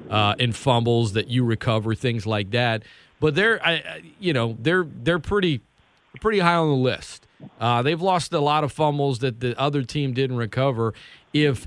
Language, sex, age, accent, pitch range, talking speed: English, male, 40-59, American, 125-155 Hz, 185 wpm